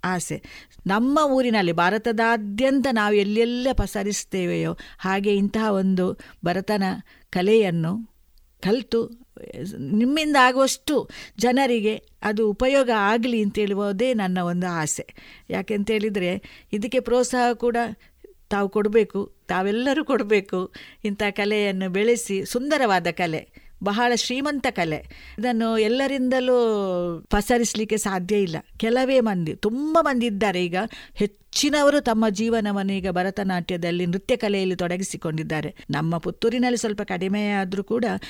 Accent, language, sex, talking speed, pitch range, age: native, Kannada, female, 100 wpm, 185-225 Hz, 50-69